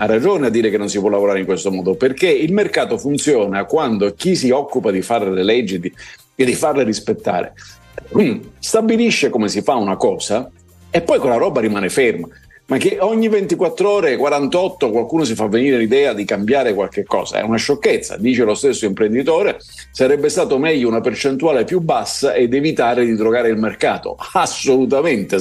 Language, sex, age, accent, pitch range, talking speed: Italian, male, 50-69, native, 105-160 Hz, 185 wpm